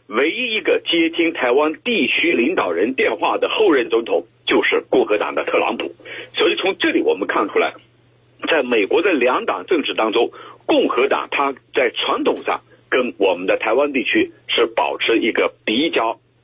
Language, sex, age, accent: Chinese, male, 50-69, native